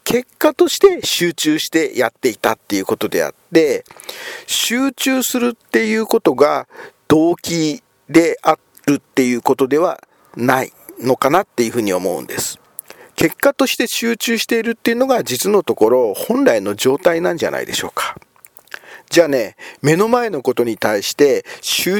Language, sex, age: Japanese, male, 50-69